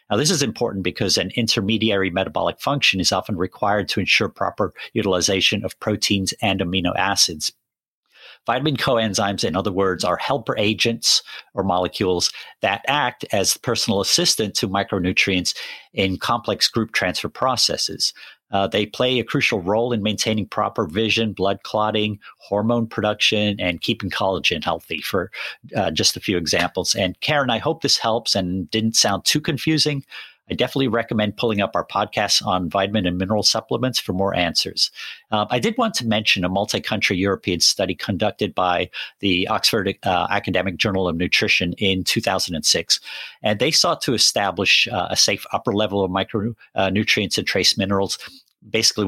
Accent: American